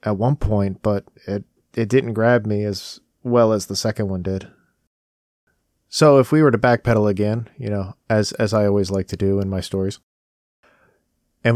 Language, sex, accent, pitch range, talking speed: English, male, American, 100-120 Hz, 185 wpm